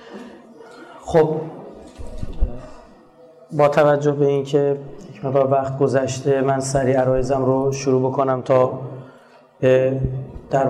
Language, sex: Persian, male